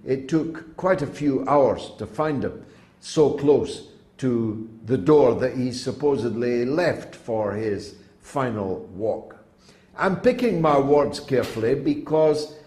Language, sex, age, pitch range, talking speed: English, male, 60-79, 120-170 Hz, 135 wpm